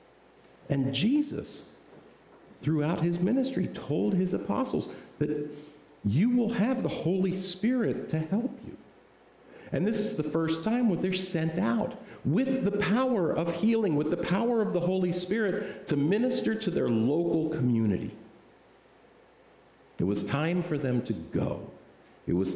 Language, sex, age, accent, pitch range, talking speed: English, male, 50-69, American, 130-205 Hz, 145 wpm